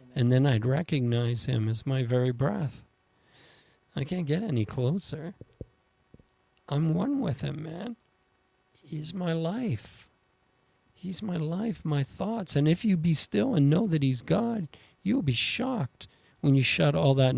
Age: 40-59